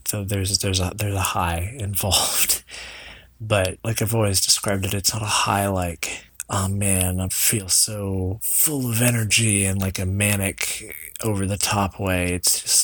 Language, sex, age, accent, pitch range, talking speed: English, male, 30-49, American, 90-105 Hz, 175 wpm